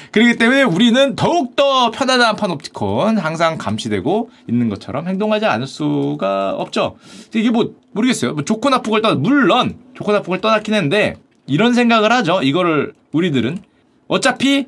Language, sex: Korean, male